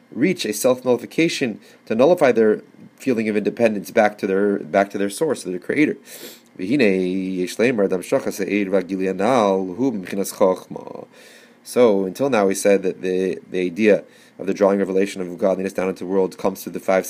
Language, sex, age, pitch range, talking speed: English, male, 30-49, 95-110 Hz, 145 wpm